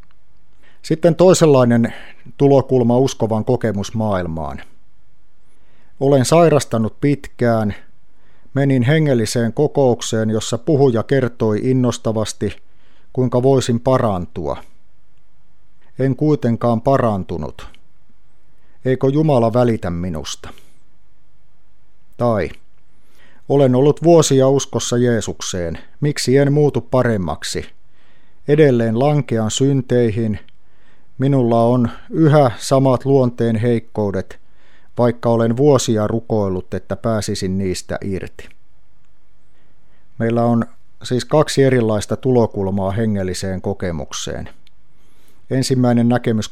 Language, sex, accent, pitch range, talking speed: Finnish, male, native, 100-130 Hz, 80 wpm